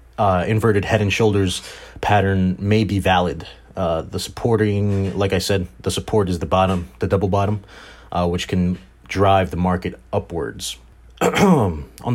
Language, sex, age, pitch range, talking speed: English, male, 30-49, 90-110 Hz, 155 wpm